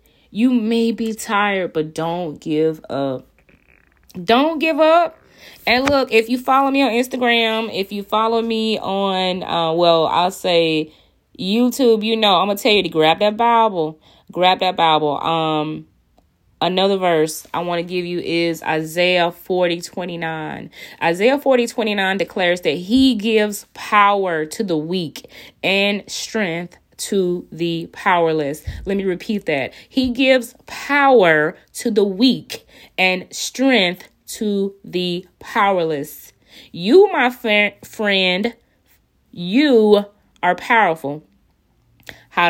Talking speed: 130 wpm